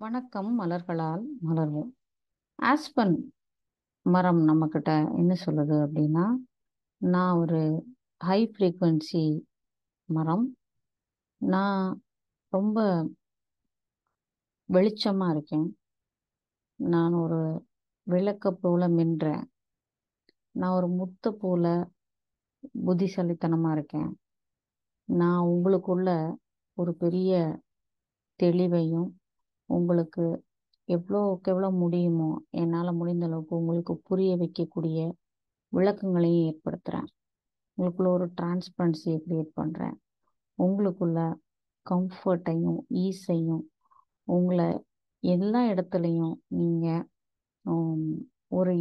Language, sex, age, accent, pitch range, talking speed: Tamil, female, 30-49, native, 165-190 Hz, 70 wpm